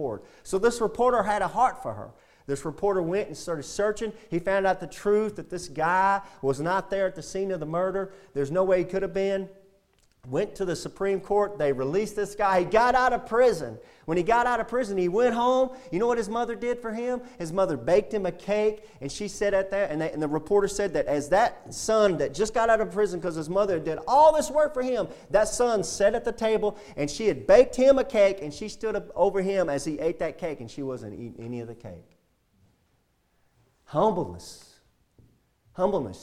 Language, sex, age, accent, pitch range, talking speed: English, male, 40-59, American, 130-200 Hz, 230 wpm